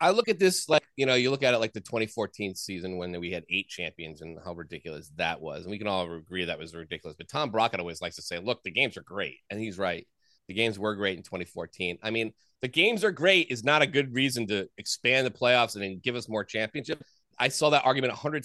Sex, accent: male, American